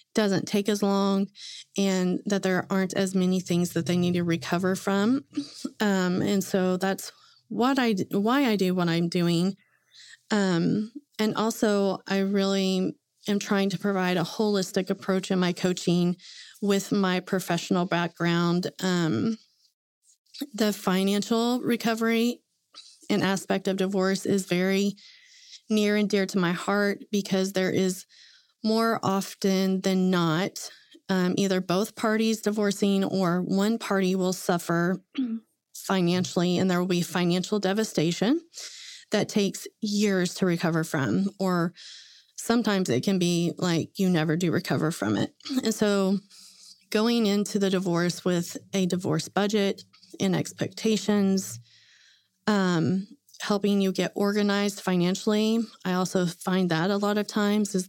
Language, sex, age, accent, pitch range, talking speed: English, female, 30-49, American, 180-210 Hz, 140 wpm